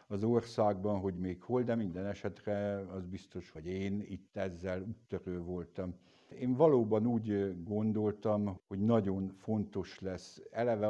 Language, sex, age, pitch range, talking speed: Hungarian, male, 60-79, 90-100 Hz, 140 wpm